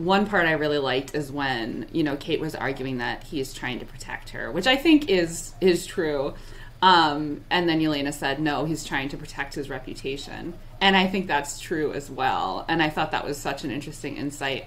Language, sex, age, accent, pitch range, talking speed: English, female, 20-39, American, 140-185 Hz, 215 wpm